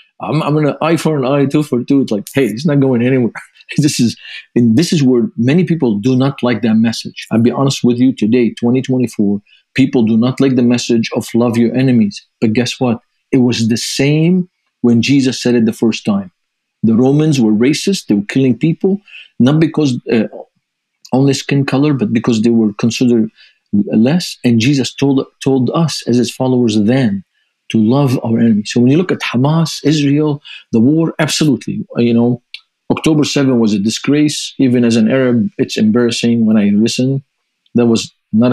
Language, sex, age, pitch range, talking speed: English, male, 50-69, 115-145 Hz, 190 wpm